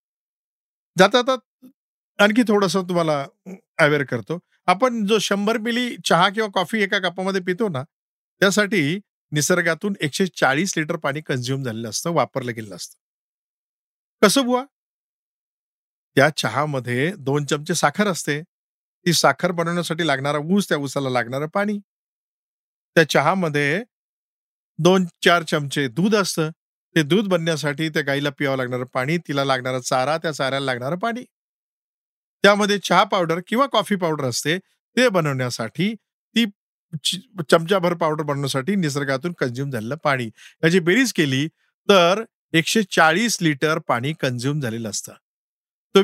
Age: 50-69